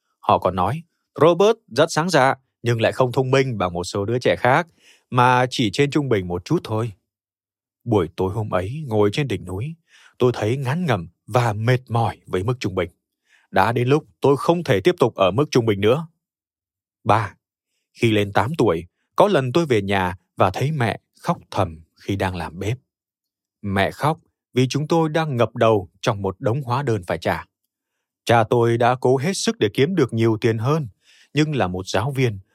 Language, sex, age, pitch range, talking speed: Vietnamese, male, 20-39, 100-140 Hz, 200 wpm